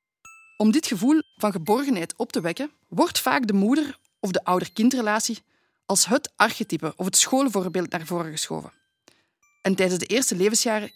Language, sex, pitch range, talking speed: Dutch, female, 185-255 Hz, 160 wpm